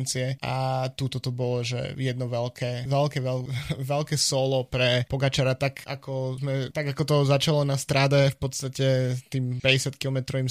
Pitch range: 130-140 Hz